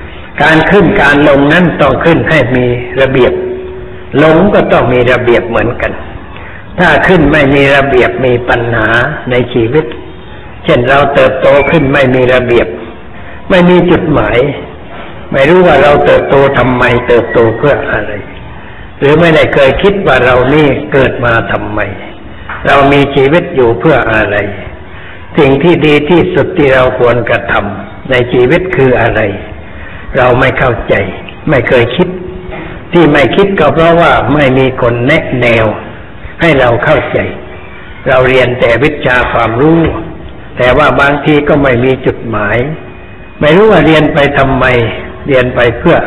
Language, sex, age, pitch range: Thai, male, 60-79, 115-150 Hz